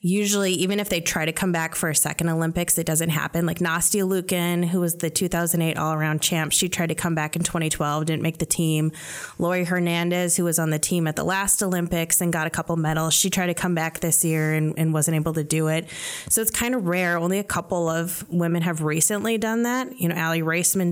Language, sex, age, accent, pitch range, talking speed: English, female, 20-39, American, 160-185 Hz, 240 wpm